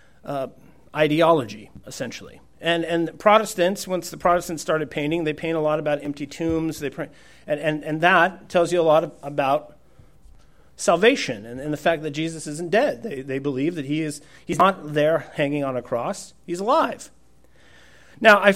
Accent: American